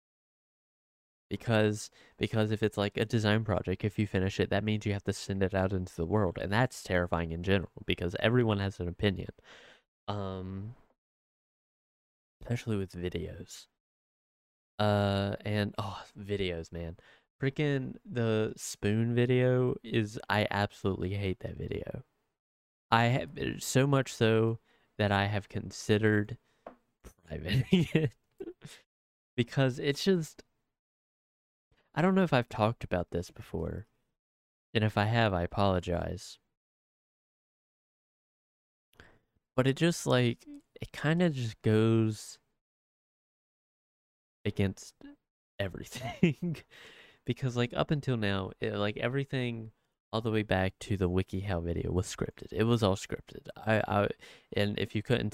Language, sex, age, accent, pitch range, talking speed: English, male, 10-29, American, 95-120 Hz, 130 wpm